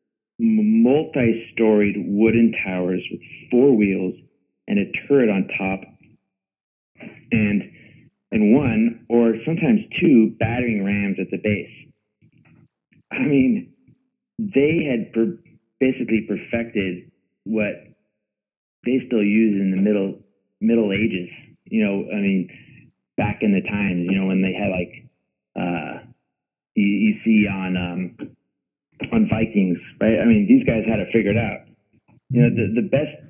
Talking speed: 135 wpm